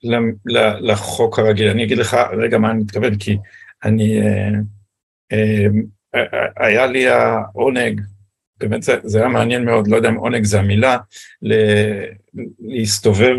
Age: 50-69